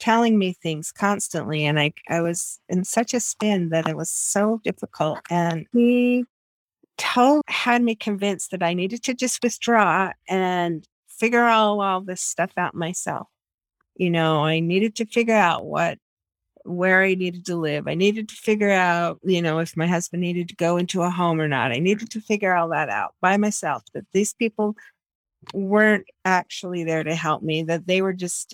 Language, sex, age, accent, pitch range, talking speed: English, female, 50-69, American, 165-210 Hz, 190 wpm